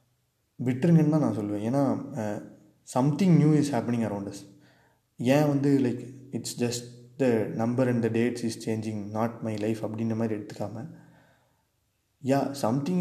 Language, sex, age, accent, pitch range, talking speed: Tamil, male, 20-39, native, 110-140 Hz, 140 wpm